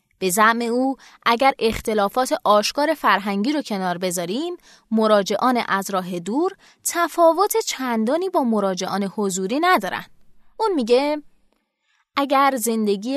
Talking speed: 105 wpm